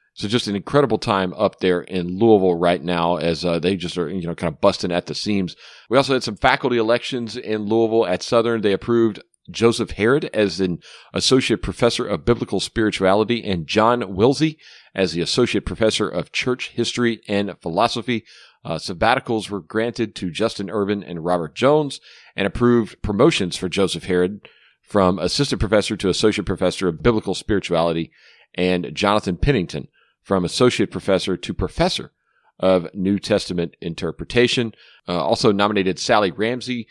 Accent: American